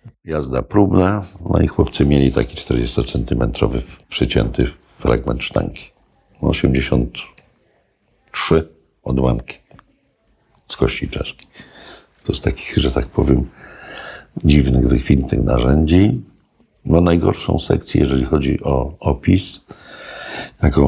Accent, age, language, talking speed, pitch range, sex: native, 50-69, Polish, 95 wpm, 65-85 Hz, male